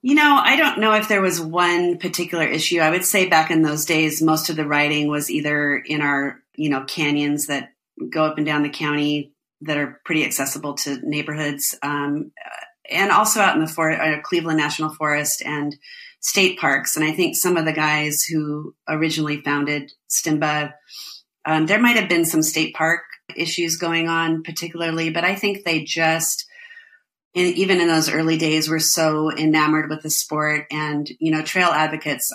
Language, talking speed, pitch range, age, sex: English, 185 wpm, 150-170 Hz, 30-49, female